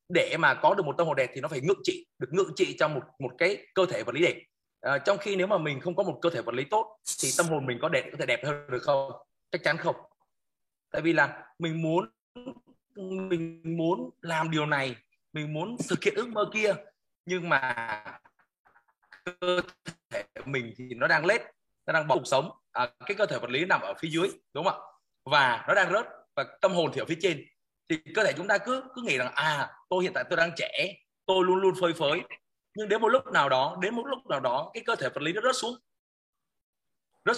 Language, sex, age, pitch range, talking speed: Vietnamese, male, 20-39, 160-230 Hz, 240 wpm